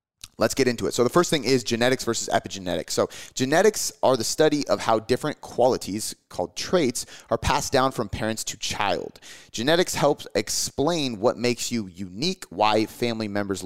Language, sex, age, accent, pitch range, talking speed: English, male, 30-49, American, 100-125 Hz, 175 wpm